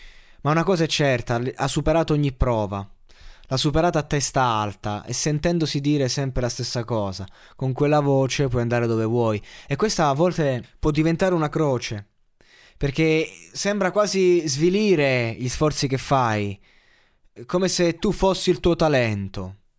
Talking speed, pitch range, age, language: 155 wpm, 120-145 Hz, 20-39, Italian